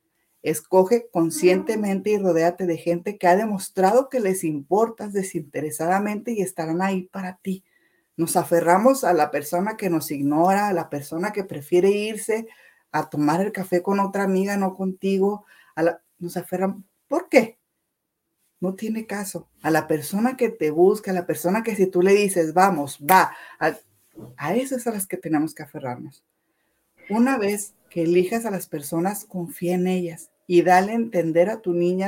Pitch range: 165-205 Hz